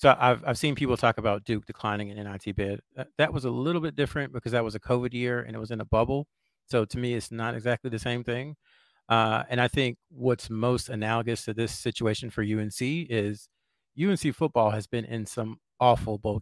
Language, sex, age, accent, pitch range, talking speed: English, male, 40-59, American, 110-125 Hz, 220 wpm